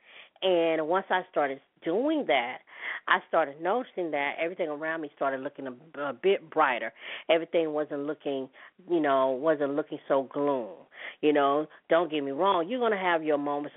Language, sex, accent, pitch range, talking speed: English, female, American, 140-165 Hz, 170 wpm